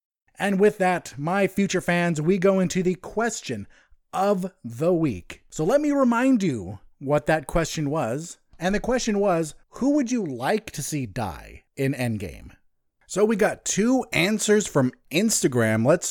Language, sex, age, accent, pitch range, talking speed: English, male, 30-49, American, 125-190 Hz, 165 wpm